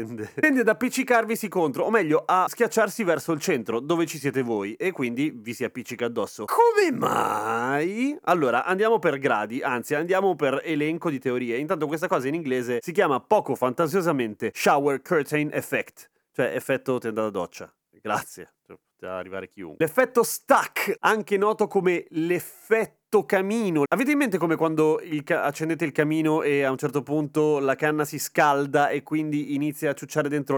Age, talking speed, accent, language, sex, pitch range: 30-49, 170 wpm, native, Italian, male, 130-185 Hz